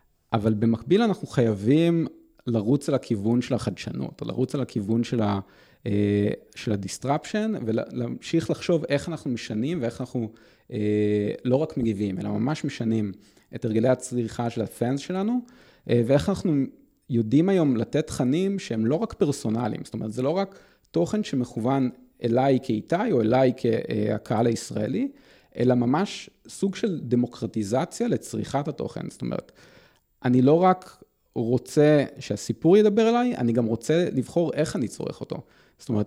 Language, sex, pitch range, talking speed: English, male, 115-155 Hz, 140 wpm